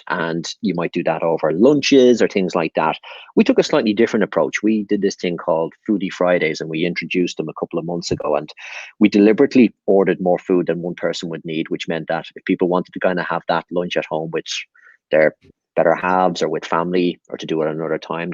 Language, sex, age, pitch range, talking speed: English, male, 30-49, 85-100 Hz, 230 wpm